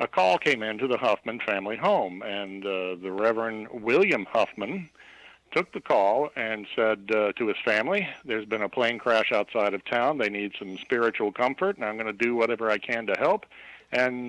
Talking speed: 195 wpm